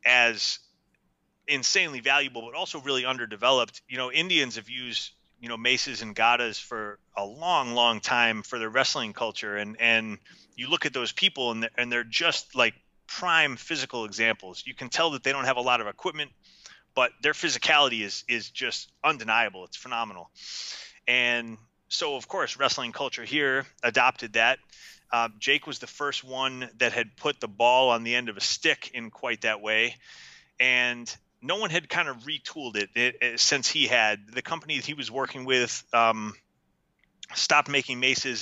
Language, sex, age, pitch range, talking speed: English, male, 30-49, 115-135 Hz, 180 wpm